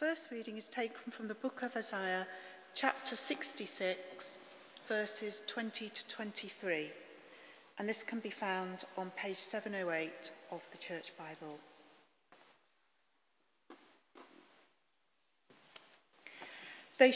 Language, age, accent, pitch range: English, 40-59, British, 185-235 Hz